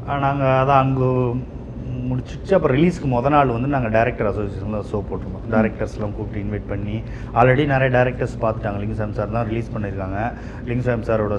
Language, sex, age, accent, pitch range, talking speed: Tamil, male, 30-49, native, 110-135 Hz, 165 wpm